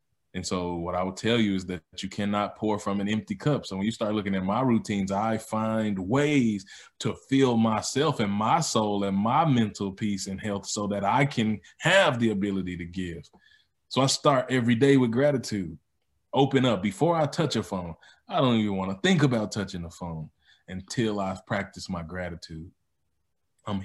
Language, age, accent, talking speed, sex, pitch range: English, 20-39, American, 195 wpm, male, 100-120 Hz